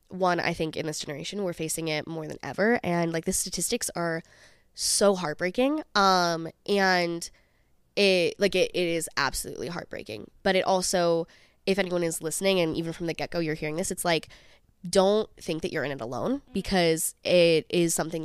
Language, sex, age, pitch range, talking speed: English, female, 10-29, 160-190 Hz, 185 wpm